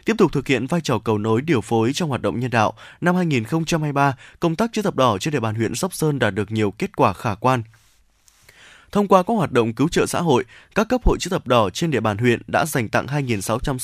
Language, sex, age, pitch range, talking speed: Vietnamese, male, 20-39, 115-170 Hz, 250 wpm